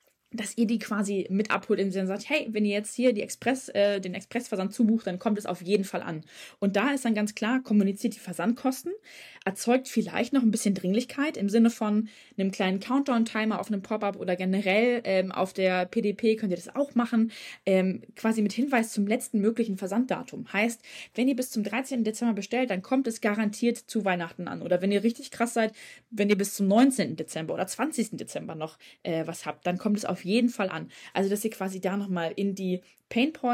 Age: 20-39